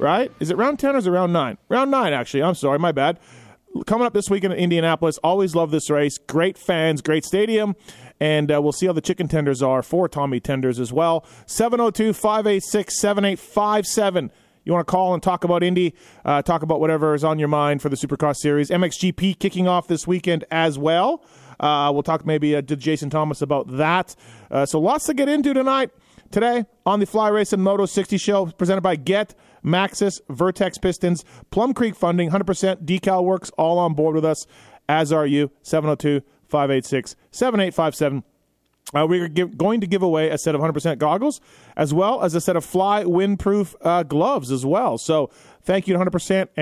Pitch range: 150-195 Hz